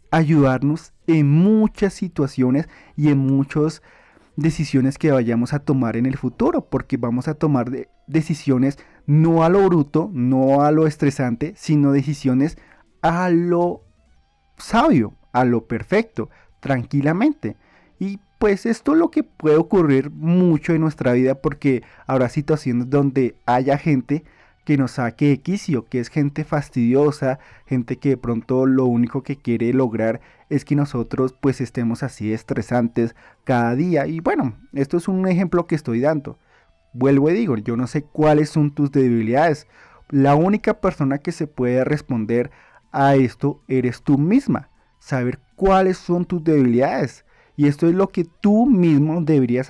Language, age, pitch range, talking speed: Spanish, 30-49, 130-160 Hz, 150 wpm